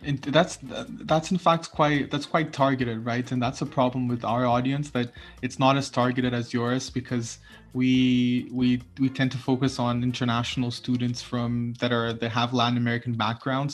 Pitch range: 120-130 Hz